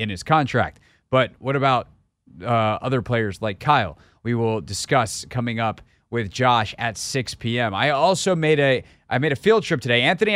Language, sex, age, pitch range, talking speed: English, male, 30-49, 110-145 Hz, 185 wpm